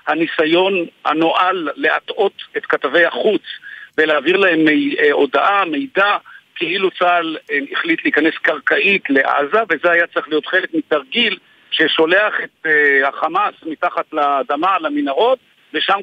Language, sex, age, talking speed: Hebrew, male, 50-69, 110 wpm